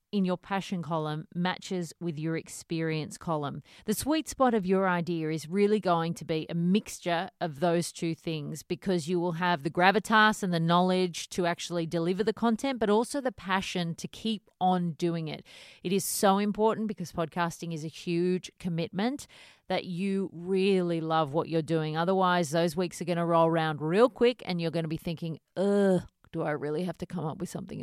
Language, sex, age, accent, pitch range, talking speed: English, female, 30-49, Australian, 165-205 Hz, 200 wpm